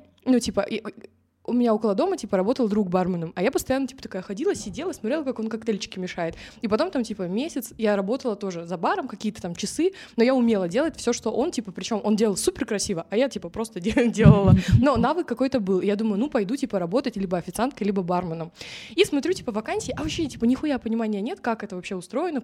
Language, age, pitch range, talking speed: Russian, 20-39, 200-260 Hz, 220 wpm